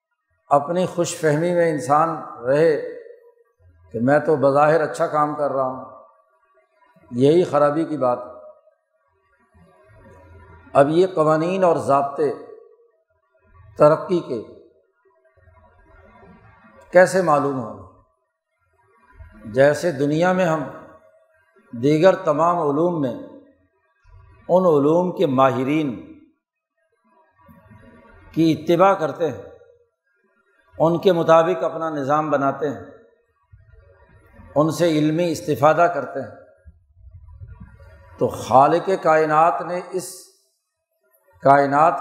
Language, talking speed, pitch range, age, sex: Urdu, 90 wpm, 125-185 Hz, 60-79, male